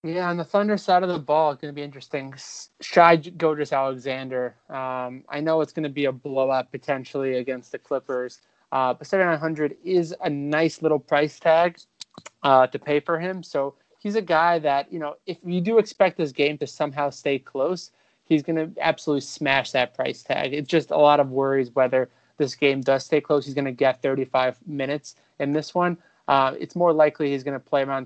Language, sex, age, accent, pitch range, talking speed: English, male, 20-39, American, 135-155 Hz, 210 wpm